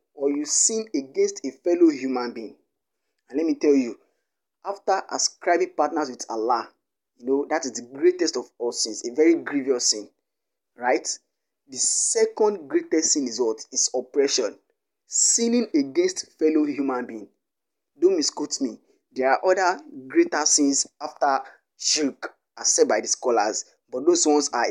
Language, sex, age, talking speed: English, male, 20-39, 155 wpm